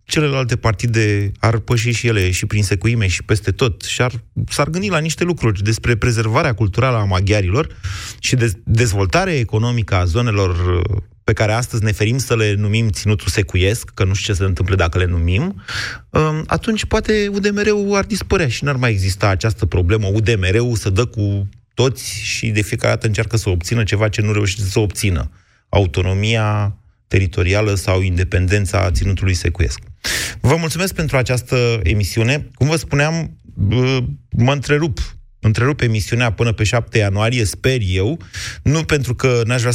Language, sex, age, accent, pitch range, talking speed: Romanian, male, 30-49, native, 100-125 Hz, 165 wpm